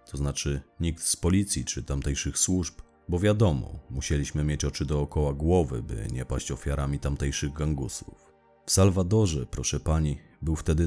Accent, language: native, Polish